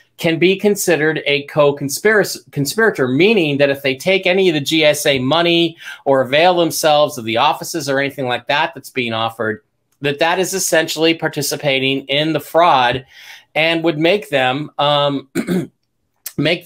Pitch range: 140-175 Hz